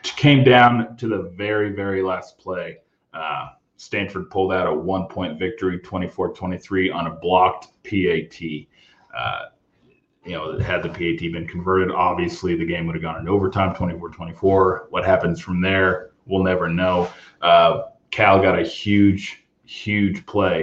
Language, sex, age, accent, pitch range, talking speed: English, male, 30-49, American, 90-110 Hz, 145 wpm